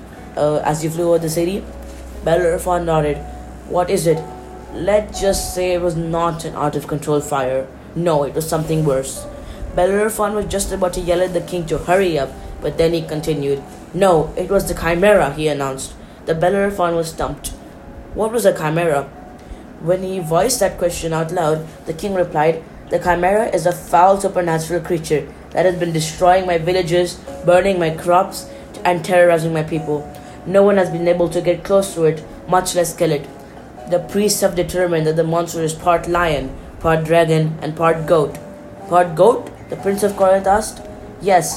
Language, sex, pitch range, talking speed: English, female, 155-185 Hz, 180 wpm